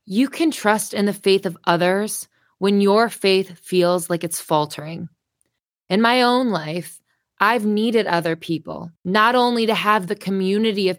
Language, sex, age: English, female, 20-39